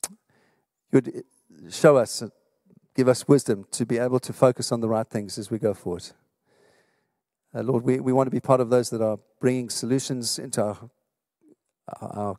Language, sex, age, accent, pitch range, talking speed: English, male, 50-69, British, 115-135 Hz, 180 wpm